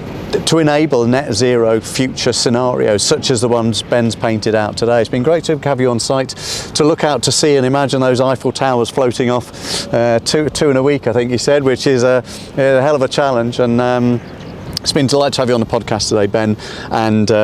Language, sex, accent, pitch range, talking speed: English, male, British, 115-140 Hz, 230 wpm